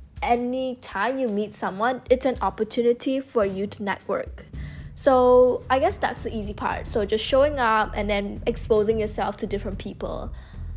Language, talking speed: English, 160 wpm